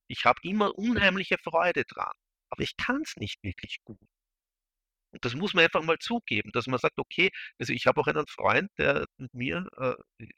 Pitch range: 110-150 Hz